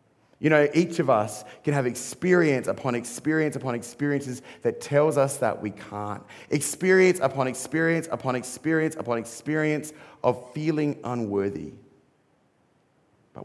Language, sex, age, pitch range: English, male, 30-49, 105-150 Hz